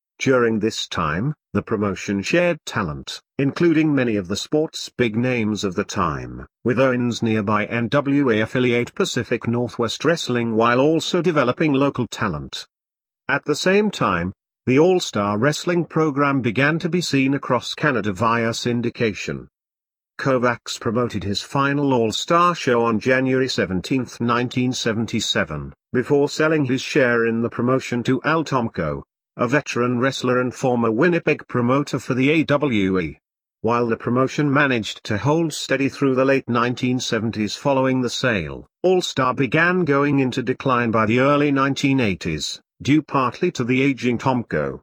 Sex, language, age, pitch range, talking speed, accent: male, English, 50-69, 115-145 Hz, 145 wpm, British